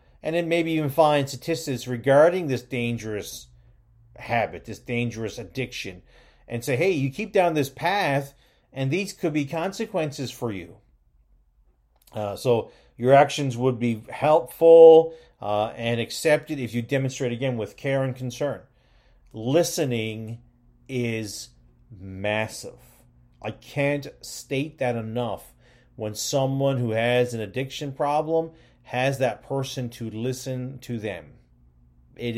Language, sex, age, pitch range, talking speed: English, male, 40-59, 115-140 Hz, 130 wpm